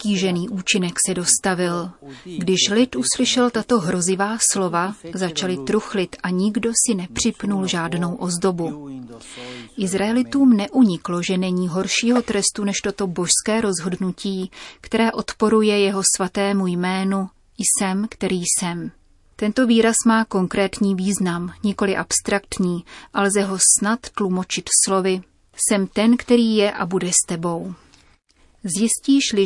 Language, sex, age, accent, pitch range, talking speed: Czech, female, 30-49, native, 185-215 Hz, 115 wpm